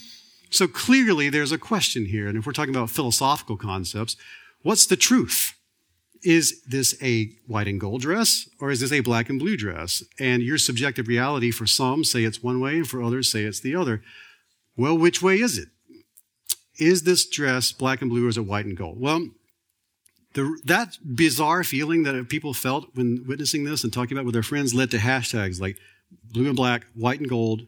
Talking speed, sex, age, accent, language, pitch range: 195 wpm, male, 40-59, American, Dutch, 115-155 Hz